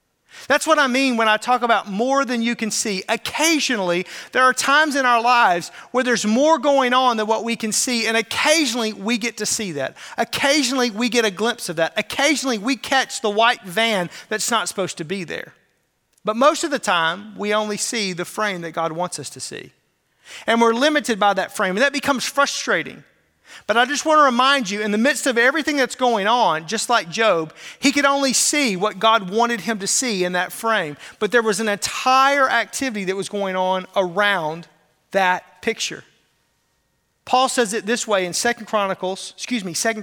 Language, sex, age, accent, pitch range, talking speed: English, male, 40-59, American, 195-255 Hz, 205 wpm